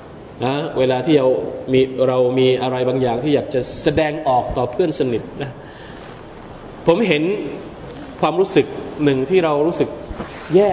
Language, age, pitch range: Thai, 20-39, 135-195 Hz